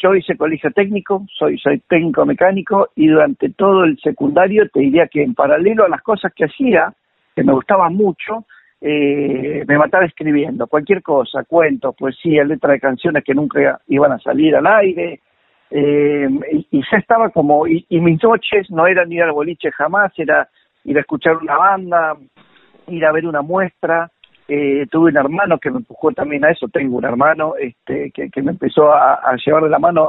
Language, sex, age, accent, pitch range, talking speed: Spanish, male, 50-69, Argentinian, 150-195 Hz, 190 wpm